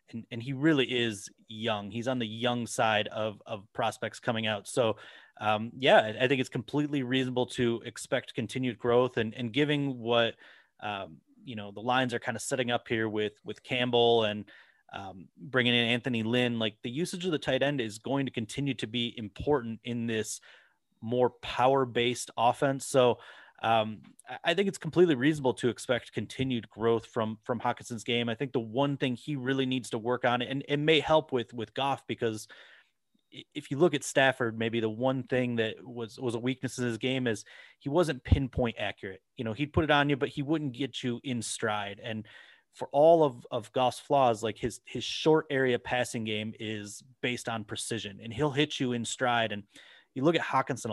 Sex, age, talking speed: male, 30-49, 200 wpm